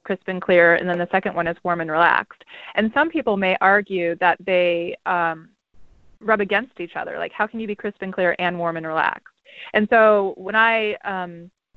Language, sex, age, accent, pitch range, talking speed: English, female, 20-39, American, 175-220 Hz, 210 wpm